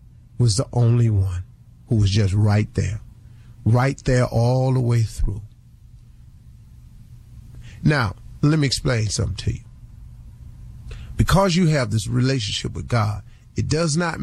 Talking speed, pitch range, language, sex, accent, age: 135 wpm, 110-130 Hz, English, male, American, 40-59